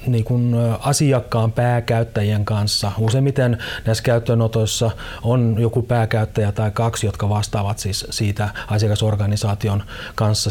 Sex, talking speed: male, 105 wpm